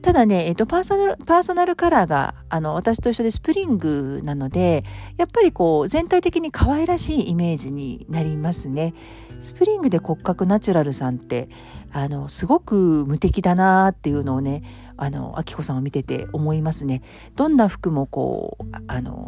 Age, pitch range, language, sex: 50-69, 145-230 Hz, Japanese, female